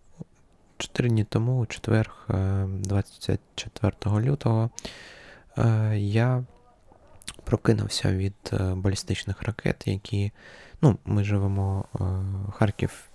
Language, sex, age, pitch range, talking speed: Ukrainian, male, 20-39, 95-115 Hz, 80 wpm